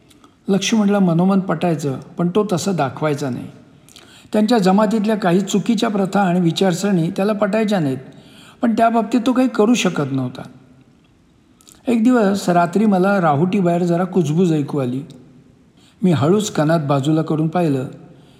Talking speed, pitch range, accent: 135 wpm, 160-200 Hz, native